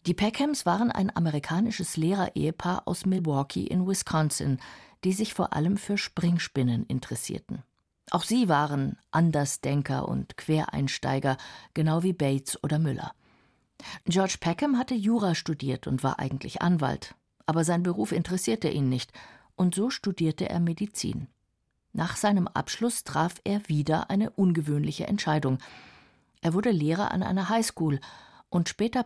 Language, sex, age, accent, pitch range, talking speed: German, female, 50-69, German, 145-195 Hz, 135 wpm